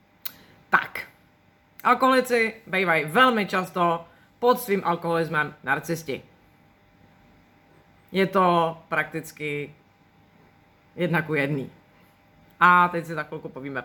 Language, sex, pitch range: Czech, female, 160-230 Hz